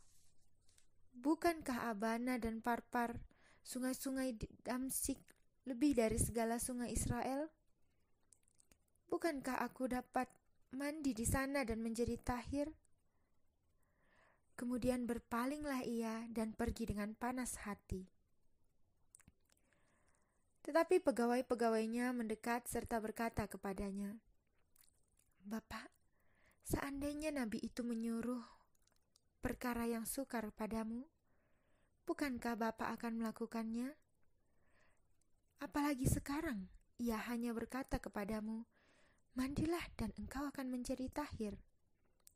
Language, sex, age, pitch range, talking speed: Indonesian, female, 20-39, 220-260 Hz, 85 wpm